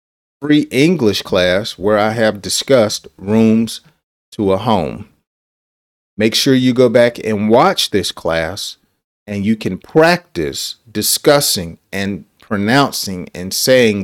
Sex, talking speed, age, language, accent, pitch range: male, 125 wpm, 40-59, English, American, 95-120 Hz